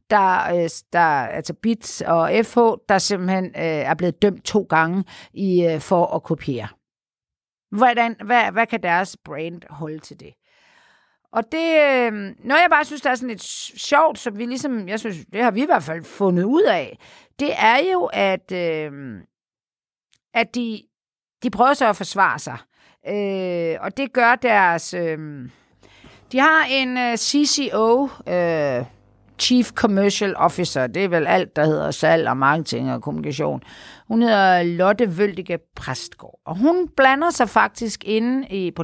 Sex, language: female, Danish